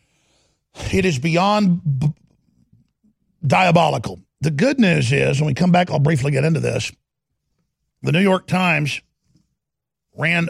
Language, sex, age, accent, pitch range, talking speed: English, male, 50-69, American, 140-180 Hz, 130 wpm